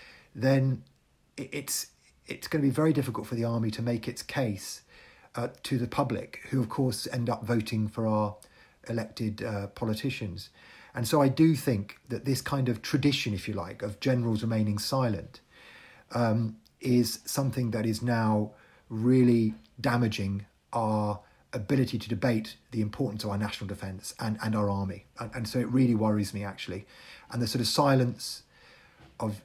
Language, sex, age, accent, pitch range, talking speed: English, male, 40-59, British, 105-125 Hz, 165 wpm